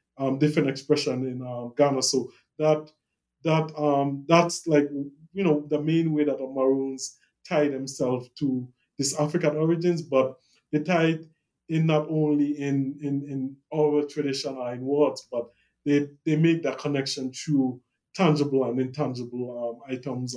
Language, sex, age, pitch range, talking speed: English, male, 20-39, 130-155 Hz, 155 wpm